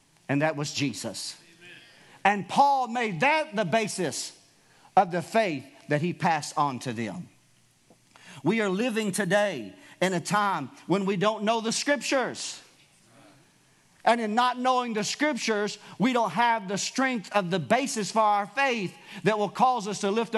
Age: 50-69